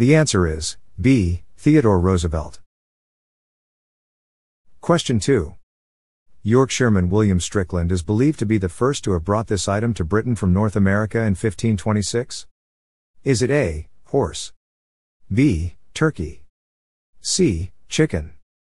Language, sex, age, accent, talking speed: English, male, 50-69, American, 120 wpm